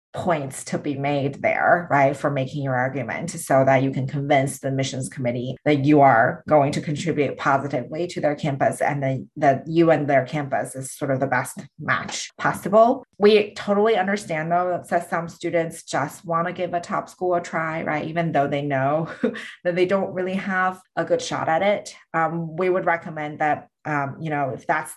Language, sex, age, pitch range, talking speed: English, female, 30-49, 145-180 Hz, 195 wpm